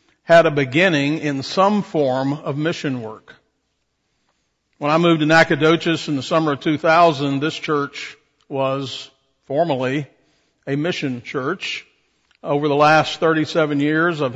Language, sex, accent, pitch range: English, male, American, 140-160 Hz